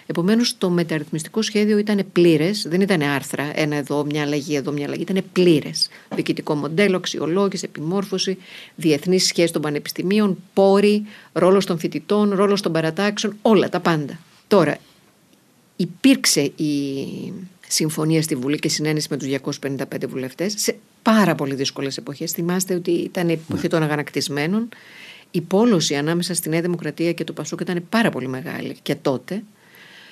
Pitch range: 150-195 Hz